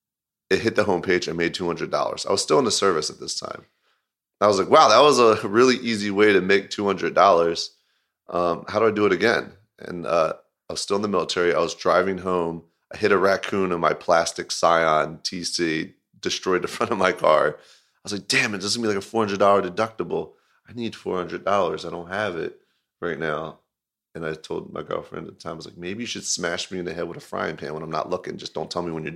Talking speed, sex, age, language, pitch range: 240 wpm, male, 30-49, English, 85-100 Hz